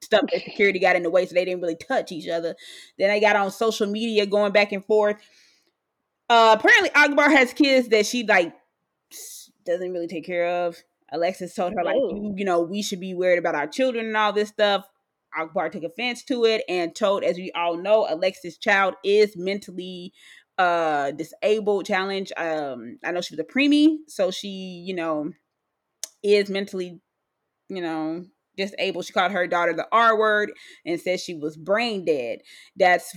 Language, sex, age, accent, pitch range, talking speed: English, female, 20-39, American, 175-225 Hz, 185 wpm